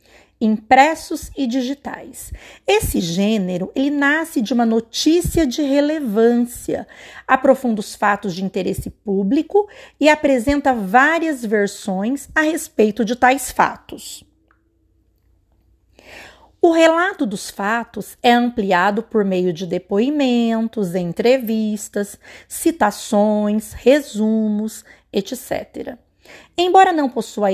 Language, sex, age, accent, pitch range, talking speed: Portuguese, female, 40-59, Brazilian, 205-280 Hz, 95 wpm